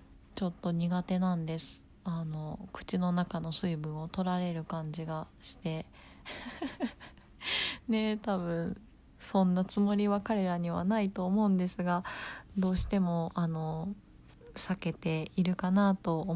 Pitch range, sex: 170-205 Hz, female